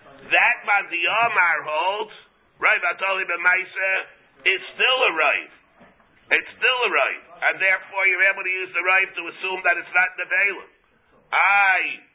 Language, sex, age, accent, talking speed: English, male, 50-69, American, 150 wpm